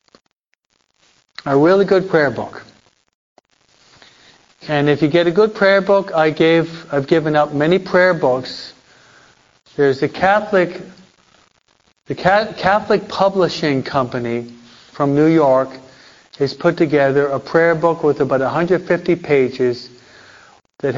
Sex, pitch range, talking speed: male, 150-175 Hz, 125 wpm